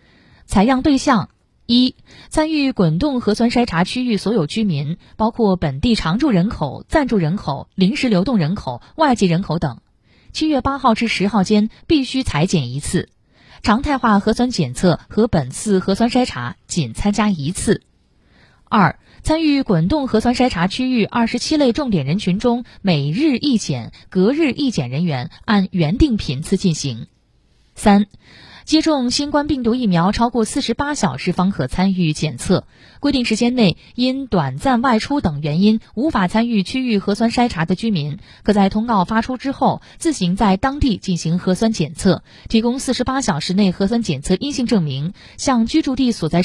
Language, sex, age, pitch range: Chinese, female, 20-39, 180-250 Hz